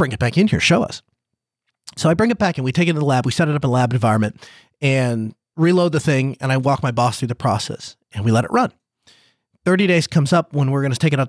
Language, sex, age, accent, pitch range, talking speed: English, male, 30-49, American, 135-210 Hz, 290 wpm